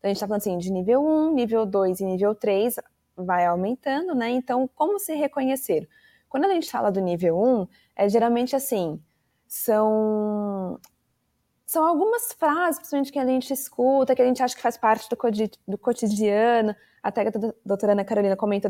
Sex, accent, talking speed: female, Brazilian, 185 wpm